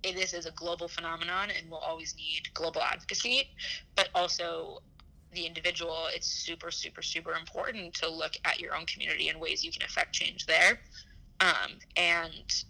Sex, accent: female, American